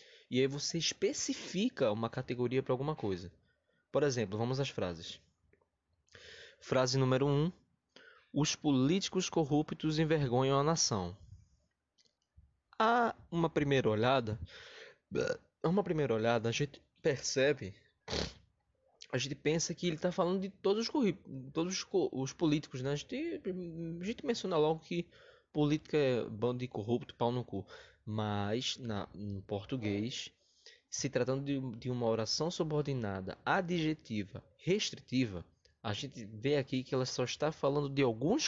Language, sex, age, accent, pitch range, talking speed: Portuguese, male, 20-39, Brazilian, 110-155 Hz, 135 wpm